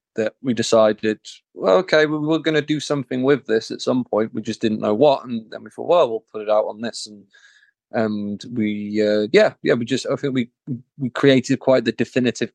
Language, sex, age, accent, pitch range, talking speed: English, male, 20-39, British, 110-130 Hz, 225 wpm